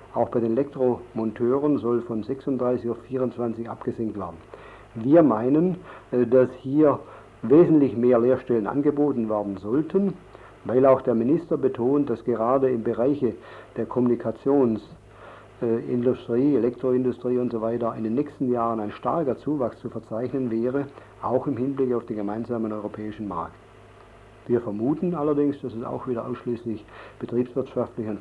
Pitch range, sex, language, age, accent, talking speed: 110-130 Hz, male, German, 50-69, German, 135 wpm